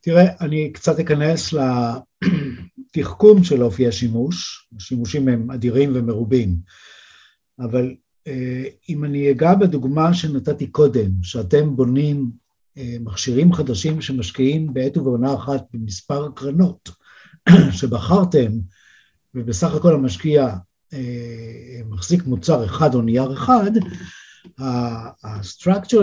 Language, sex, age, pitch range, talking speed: Hebrew, male, 50-69, 125-175 Hz, 90 wpm